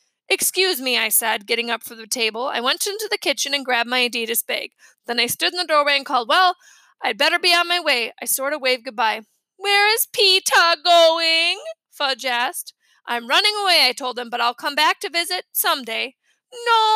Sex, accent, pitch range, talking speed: female, American, 255-365 Hz, 210 wpm